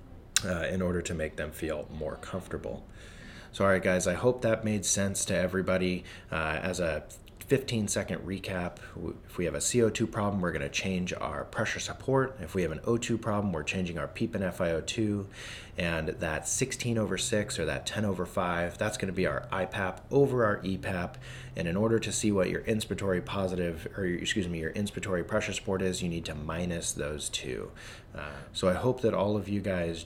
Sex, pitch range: male, 85-105 Hz